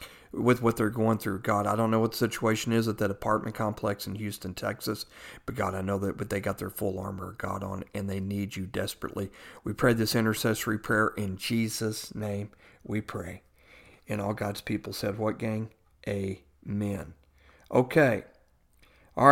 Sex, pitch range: male, 100-120 Hz